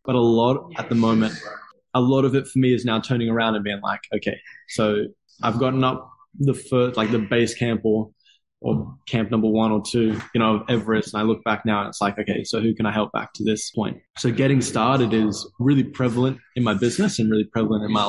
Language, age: English, 20-39